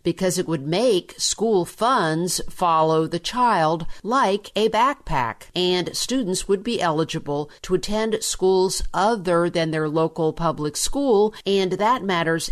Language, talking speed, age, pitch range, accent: English, 140 wpm, 50-69, 165-210 Hz, American